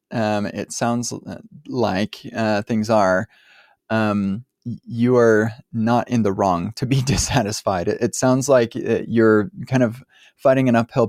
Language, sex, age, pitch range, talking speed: English, male, 20-39, 105-115 Hz, 145 wpm